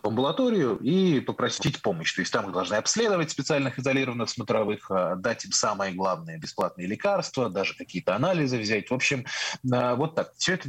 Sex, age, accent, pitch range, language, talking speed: male, 20-39, native, 120-155 Hz, Russian, 155 wpm